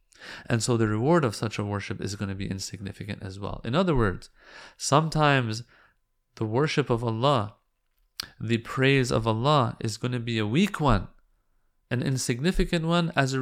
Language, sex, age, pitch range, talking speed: English, male, 30-49, 115-160 Hz, 175 wpm